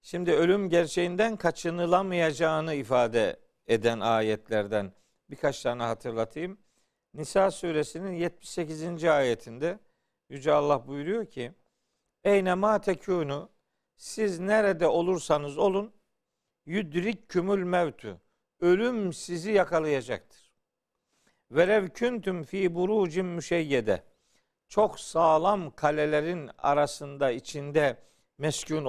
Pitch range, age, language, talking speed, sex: 135-190 Hz, 50-69, Turkish, 80 wpm, male